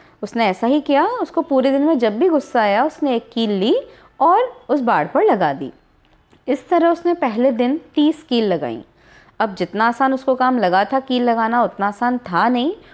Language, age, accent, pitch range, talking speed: Hindi, 30-49, native, 210-295 Hz, 200 wpm